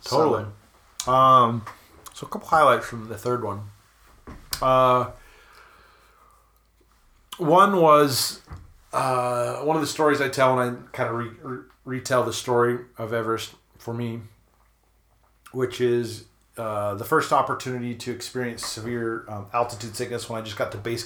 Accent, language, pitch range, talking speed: American, English, 105-125 Hz, 140 wpm